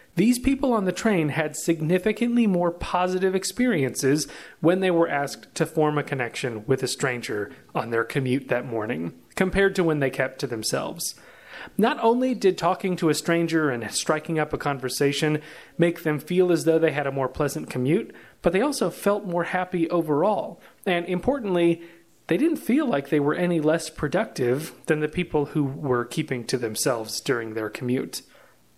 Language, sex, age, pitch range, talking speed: English, male, 30-49, 135-185 Hz, 175 wpm